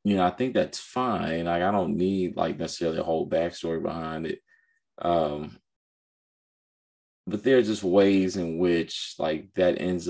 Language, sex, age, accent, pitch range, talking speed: English, male, 20-39, American, 85-125 Hz, 165 wpm